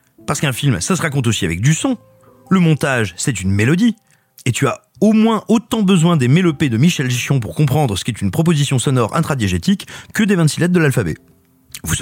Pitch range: 115-160 Hz